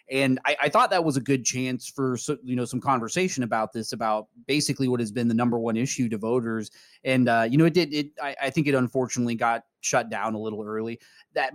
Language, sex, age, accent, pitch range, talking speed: English, male, 30-49, American, 110-140 Hz, 240 wpm